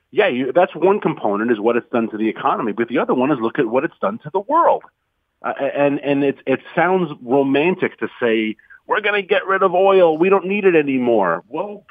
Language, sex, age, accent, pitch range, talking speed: English, male, 40-59, American, 135-180 Hz, 235 wpm